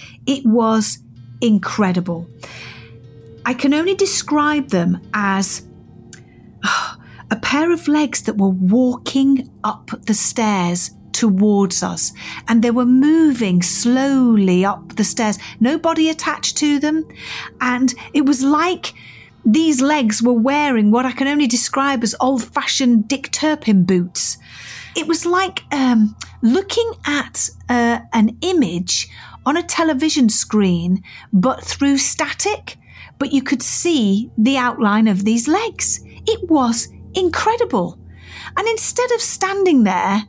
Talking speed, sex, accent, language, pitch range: 125 wpm, female, British, English, 215-310 Hz